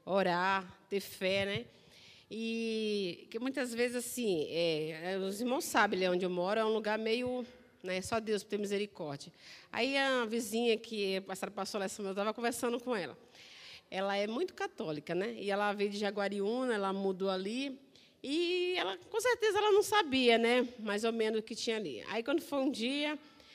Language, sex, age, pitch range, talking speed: Portuguese, female, 40-59, 195-255 Hz, 185 wpm